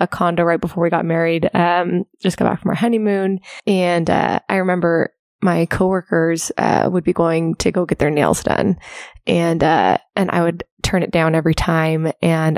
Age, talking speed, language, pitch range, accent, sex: 20-39, 195 wpm, English, 170-195 Hz, American, female